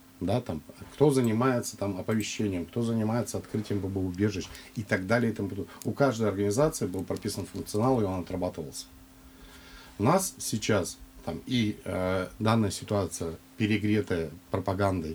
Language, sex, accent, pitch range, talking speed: Russian, male, native, 90-115 Hz, 135 wpm